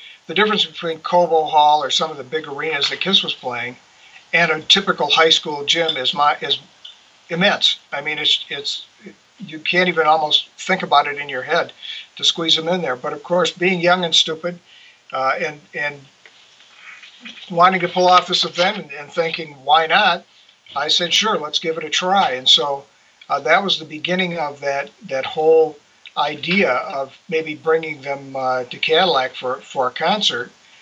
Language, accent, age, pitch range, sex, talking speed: English, American, 50-69, 145-175 Hz, male, 185 wpm